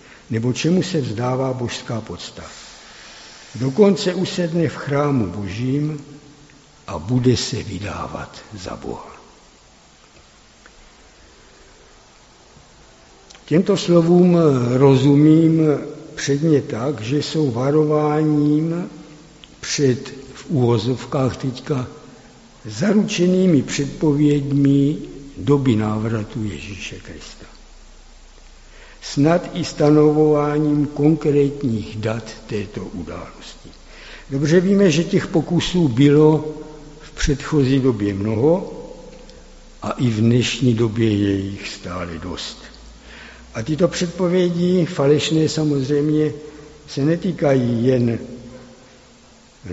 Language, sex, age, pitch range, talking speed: Czech, male, 60-79, 125-155 Hz, 85 wpm